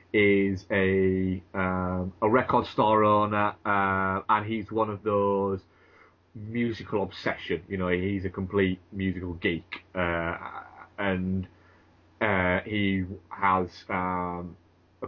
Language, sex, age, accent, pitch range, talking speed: English, male, 20-39, British, 90-110 Hz, 115 wpm